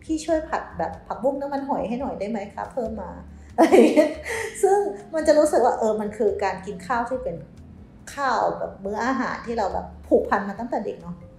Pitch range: 195-250 Hz